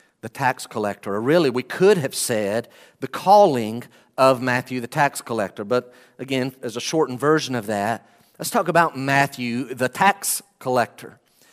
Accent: American